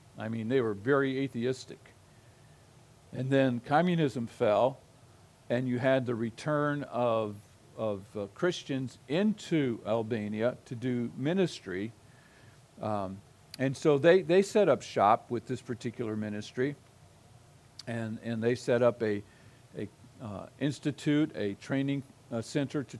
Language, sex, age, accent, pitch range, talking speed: English, male, 50-69, American, 115-145 Hz, 130 wpm